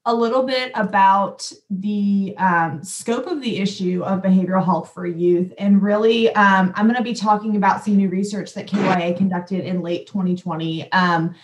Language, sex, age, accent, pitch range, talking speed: English, female, 20-39, American, 185-220 Hz, 170 wpm